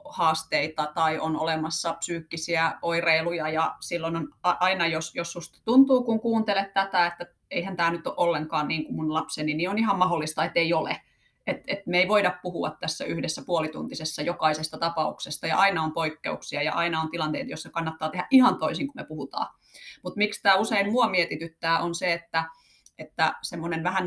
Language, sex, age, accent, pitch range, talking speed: Finnish, female, 30-49, native, 160-195 Hz, 180 wpm